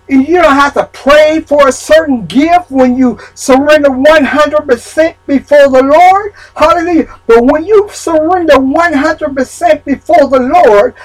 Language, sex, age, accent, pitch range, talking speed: English, male, 50-69, American, 255-360 Hz, 135 wpm